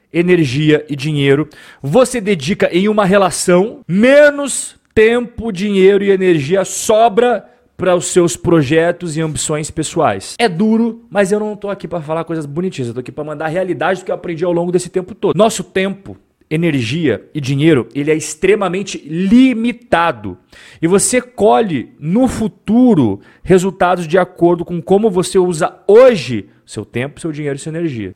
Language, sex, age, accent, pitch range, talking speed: Portuguese, male, 40-59, Brazilian, 155-215 Hz, 160 wpm